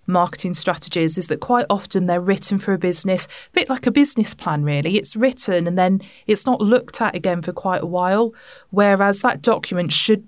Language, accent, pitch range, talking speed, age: English, British, 175-210 Hz, 205 wpm, 30-49